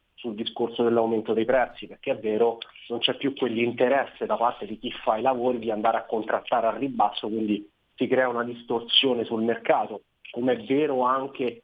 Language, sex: Italian, male